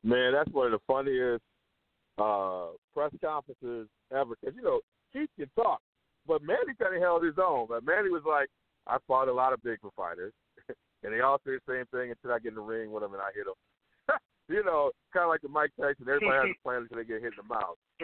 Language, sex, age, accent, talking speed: English, male, 50-69, American, 240 wpm